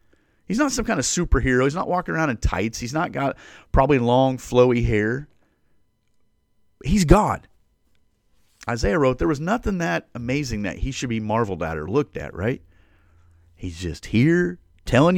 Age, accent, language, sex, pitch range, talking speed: 40-59, American, English, male, 90-145 Hz, 165 wpm